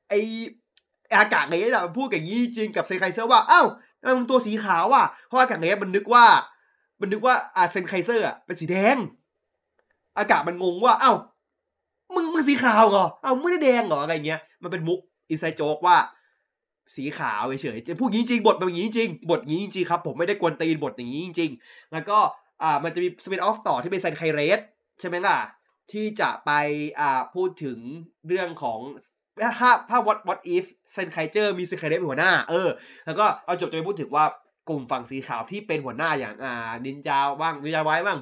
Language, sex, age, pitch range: Thai, male, 20-39, 165-245 Hz